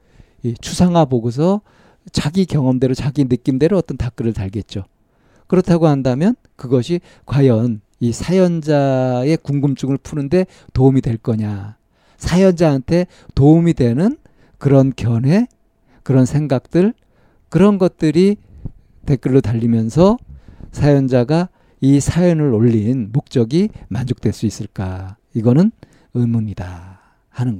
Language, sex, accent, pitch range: Korean, male, native, 120-160 Hz